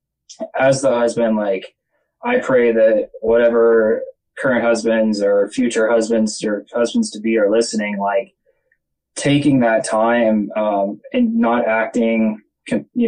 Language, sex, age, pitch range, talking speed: English, male, 20-39, 115-175 Hz, 120 wpm